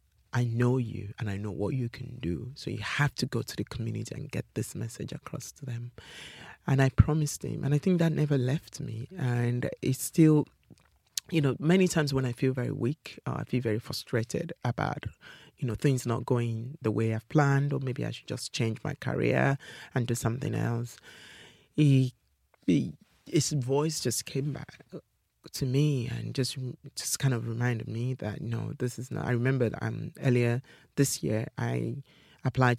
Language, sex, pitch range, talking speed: English, male, 115-140 Hz, 190 wpm